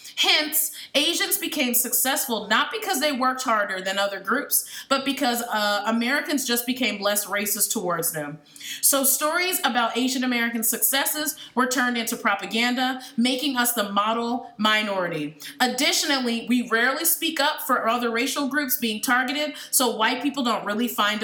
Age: 30-49